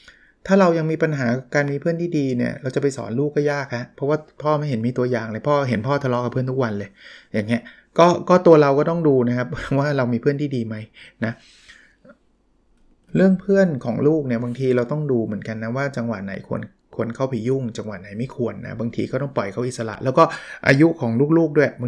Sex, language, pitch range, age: male, Thai, 120-150 Hz, 20-39